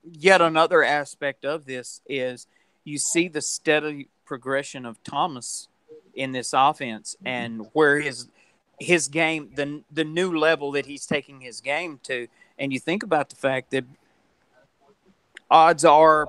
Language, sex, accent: English, male, American